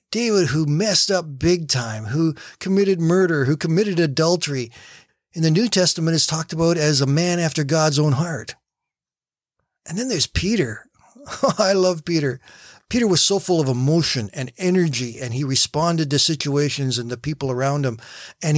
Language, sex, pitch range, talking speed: English, male, 130-165 Hz, 170 wpm